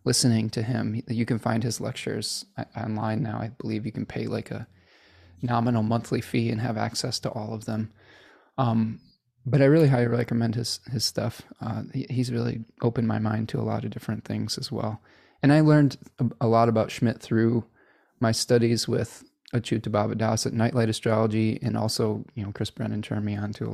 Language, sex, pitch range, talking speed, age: English, male, 110-130 Hz, 195 wpm, 20-39